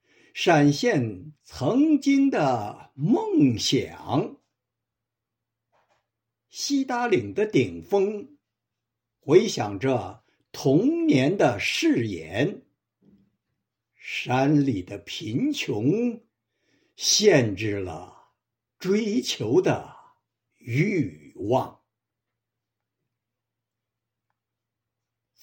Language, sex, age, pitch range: Chinese, male, 60-79, 115-190 Hz